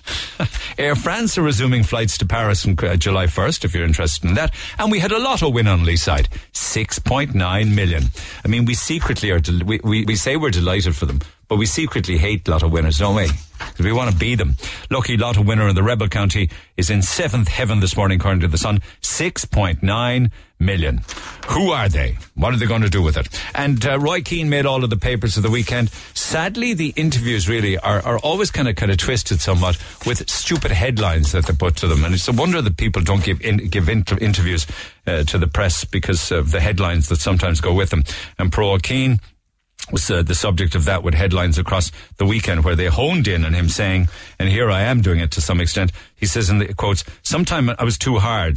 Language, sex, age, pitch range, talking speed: English, male, 50-69, 90-115 Hz, 225 wpm